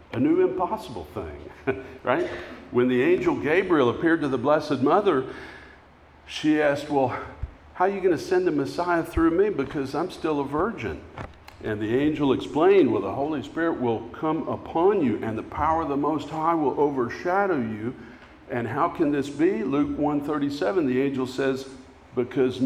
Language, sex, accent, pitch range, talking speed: English, male, American, 95-145 Hz, 175 wpm